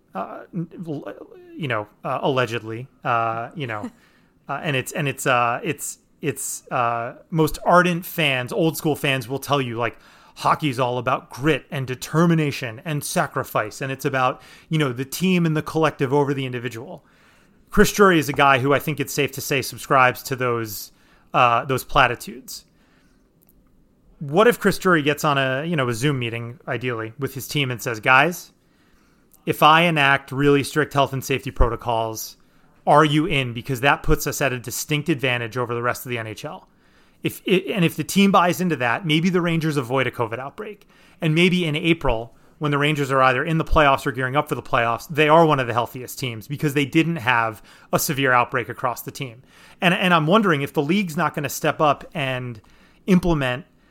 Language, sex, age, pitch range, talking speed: English, male, 30-49, 125-160 Hz, 195 wpm